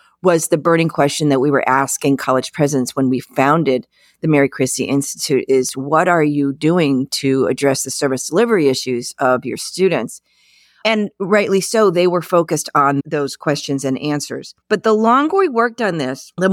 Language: English